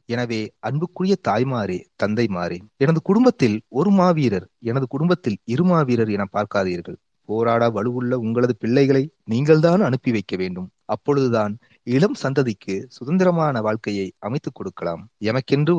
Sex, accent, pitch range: male, native, 110-150 Hz